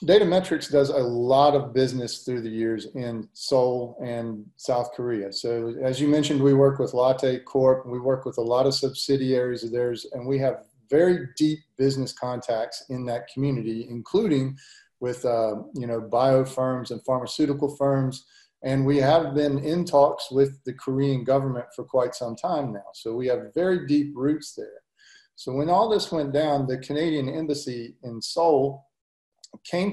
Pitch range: 125-150 Hz